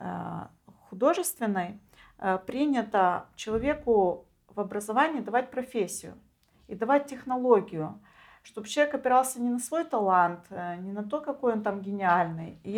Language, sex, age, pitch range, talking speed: Romanian, female, 40-59, 190-245 Hz, 115 wpm